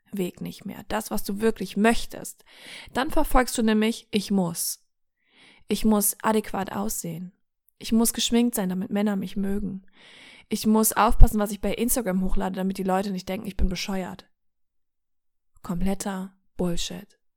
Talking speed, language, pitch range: 150 wpm, German, 190-225 Hz